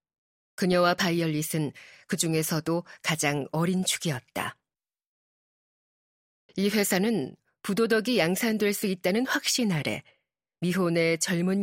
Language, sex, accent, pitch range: Korean, female, native, 160-205 Hz